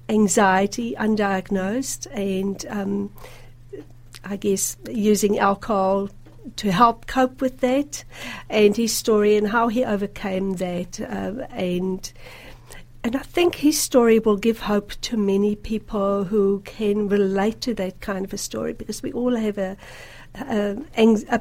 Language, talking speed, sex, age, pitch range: English, 140 wpm, female, 60-79, 185-215 Hz